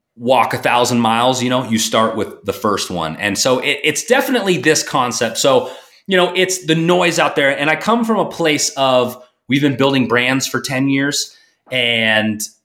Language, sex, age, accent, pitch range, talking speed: English, male, 30-49, American, 135-195 Hz, 195 wpm